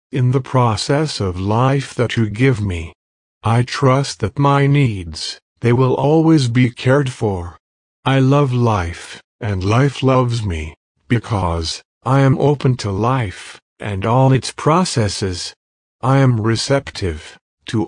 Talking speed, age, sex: 140 wpm, 50-69, male